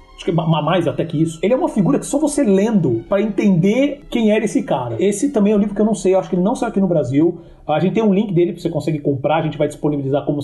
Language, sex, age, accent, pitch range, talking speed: Portuguese, male, 30-49, Brazilian, 155-195 Hz, 305 wpm